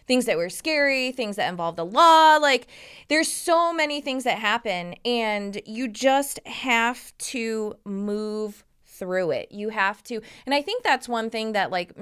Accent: American